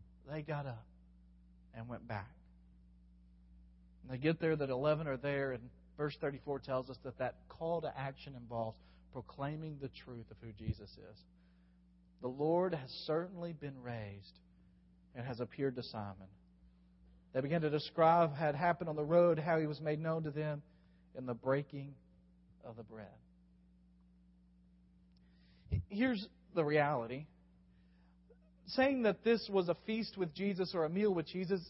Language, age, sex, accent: English, 40-59, male, American